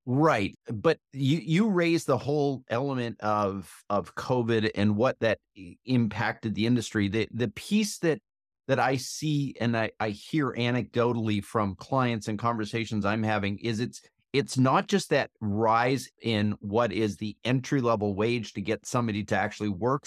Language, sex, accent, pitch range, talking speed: English, male, American, 110-150 Hz, 160 wpm